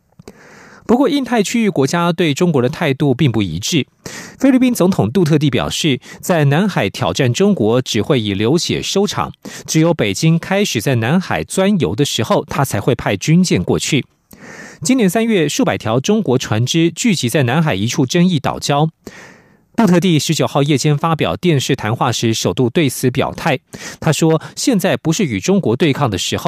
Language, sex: French, male